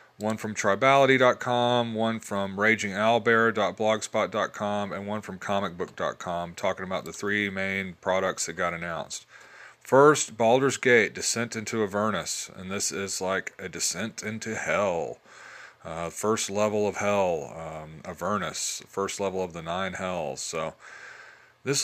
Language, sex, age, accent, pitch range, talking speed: English, male, 30-49, American, 100-130 Hz, 130 wpm